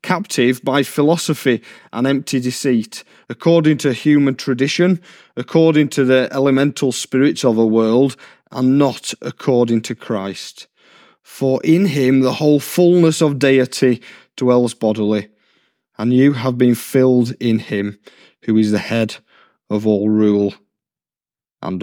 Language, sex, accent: English, male, British